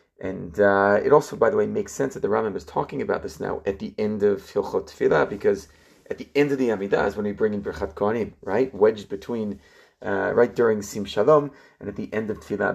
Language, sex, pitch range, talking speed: English, male, 100-150 Hz, 235 wpm